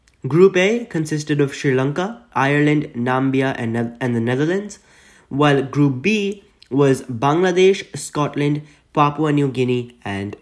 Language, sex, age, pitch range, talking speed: English, male, 20-39, 125-155 Hz, 125 wpm